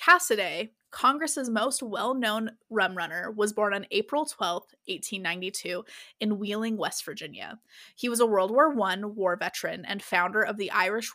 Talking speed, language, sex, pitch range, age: 155 wpm, English, female, 190-230 Hz, 20-39